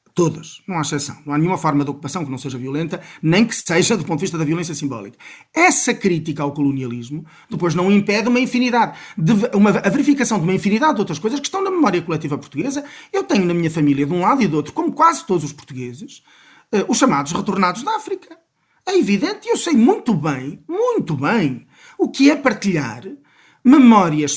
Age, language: 40-59, Portuguese